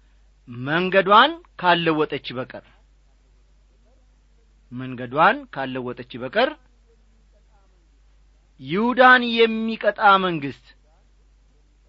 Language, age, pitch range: Amharic, 40-59, 145-210 Hz